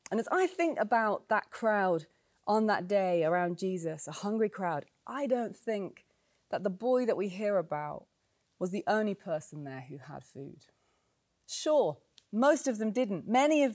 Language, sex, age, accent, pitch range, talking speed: English, female, 30-49, British, 185-260 Hz, 175 wpm